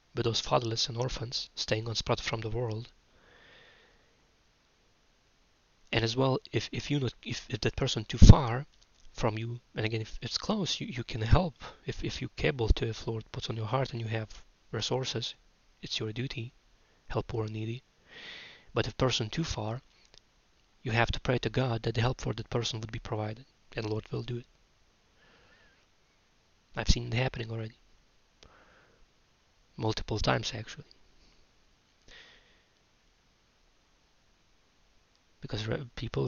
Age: 20-39